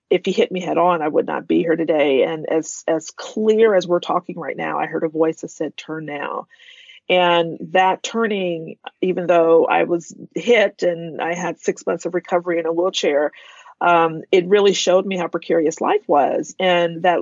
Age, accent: 40-59, American